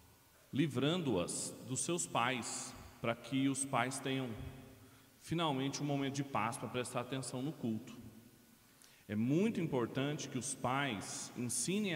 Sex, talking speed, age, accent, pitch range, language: male, 130 wpm, 40-59, Brazilian, 115-145 Hz, Portuguese